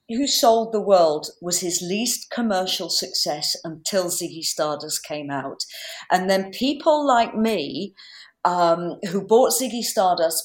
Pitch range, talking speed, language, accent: 165-240 Hz, 140 wpm, English, British